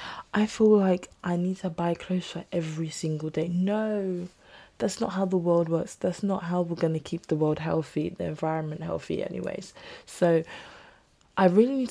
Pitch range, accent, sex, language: 160-200 Hz, British, female, English